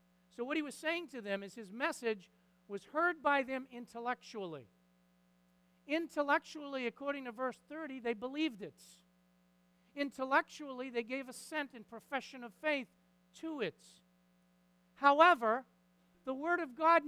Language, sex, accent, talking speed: English, male, American, 135 wpm